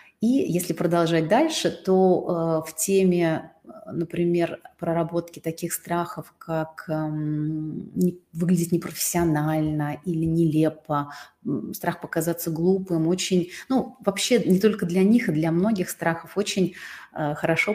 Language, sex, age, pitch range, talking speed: Russian, female, 30-49, 160-195 Hz, 120 wpm